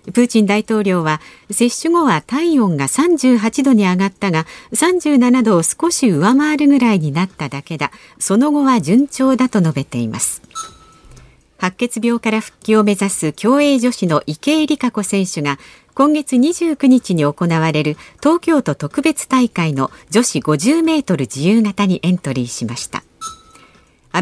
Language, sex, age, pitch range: Japanese, female, 50-69, 180-265 Hz